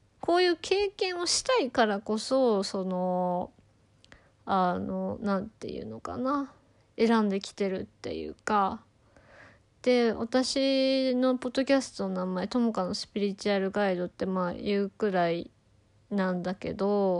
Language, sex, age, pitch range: Japanese, female, 20-39, 190-250 Hz